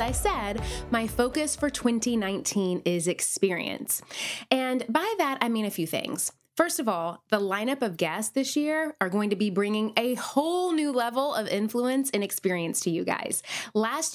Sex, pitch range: female, 200-270 Hz